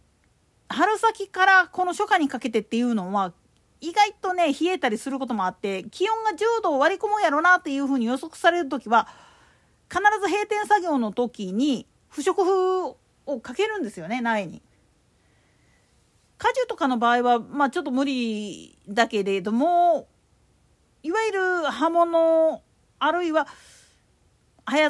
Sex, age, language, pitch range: female, 40-59, Japanese, 235-365 Hz